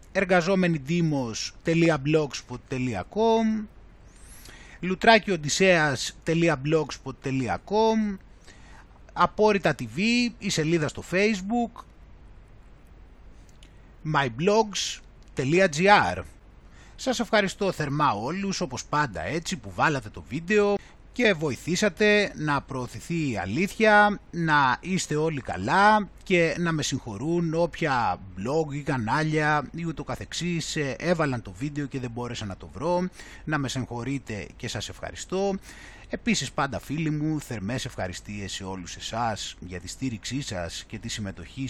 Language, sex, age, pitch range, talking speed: Greek, male, 30-49, 125-185 Hz, 105 wpm